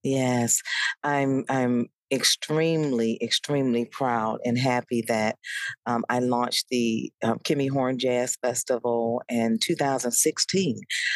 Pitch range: 130-160 Hz